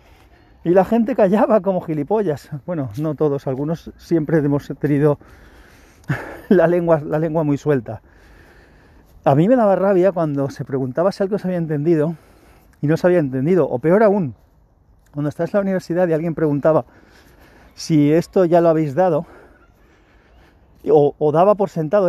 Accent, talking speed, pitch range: Spanish, 160 wpm, 140-185 Hz